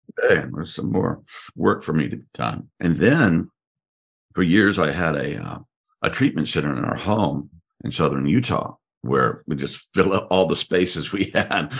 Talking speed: 190 wpm